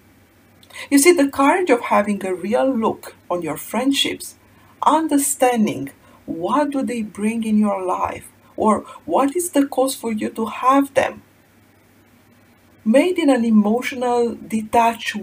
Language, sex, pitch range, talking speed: English, female, 175-260 Hz, 140 wpm